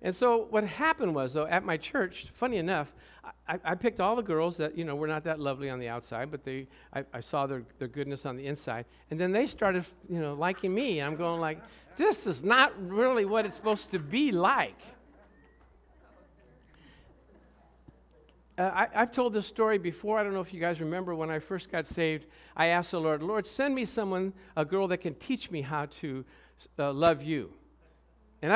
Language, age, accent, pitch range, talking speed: English, 60-79, American, 145-210 Hz, 210 wpm